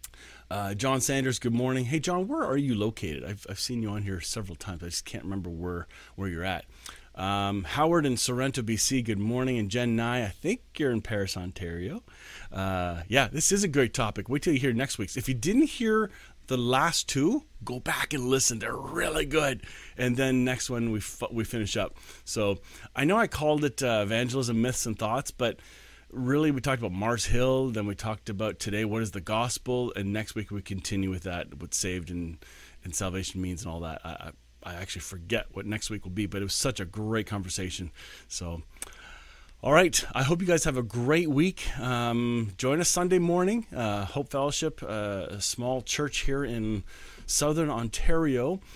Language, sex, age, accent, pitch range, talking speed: English, male, 30-49, American, 100-135 Hz, 200 wpm